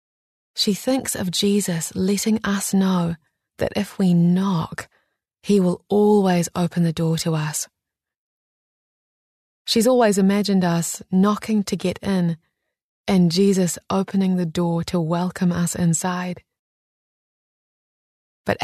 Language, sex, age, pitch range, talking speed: English, female, 20-39, 170-200 Hz, 120 wpm